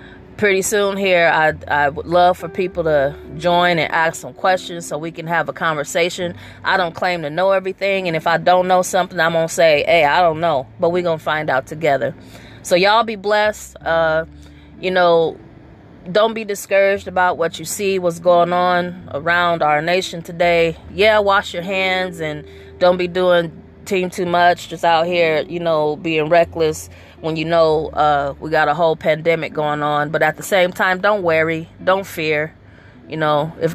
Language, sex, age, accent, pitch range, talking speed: English, female, 30-49, American, 150-180 Hz, 190 wpm